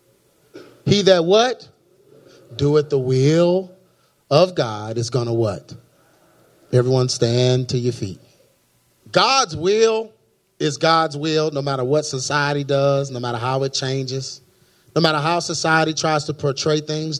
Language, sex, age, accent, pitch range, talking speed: English, male, 30-49, American, 145-185 Hz, 135 wpm